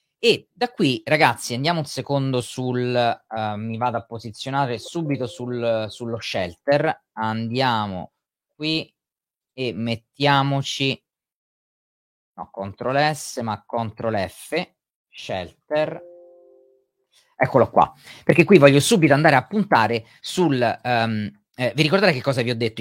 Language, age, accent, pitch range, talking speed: Italian, 30-49, native, 115-155 Hz, 120 wpm